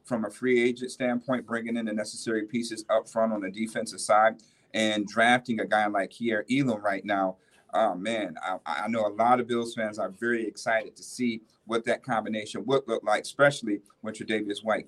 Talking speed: 205 wpm